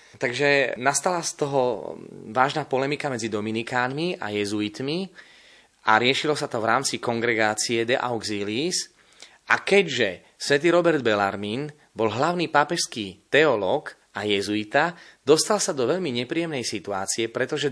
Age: 30-49